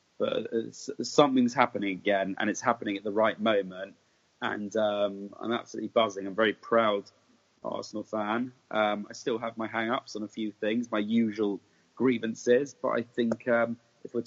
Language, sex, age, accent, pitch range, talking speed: English, male, 20-39, British, 105-115 Hz, 175 wpm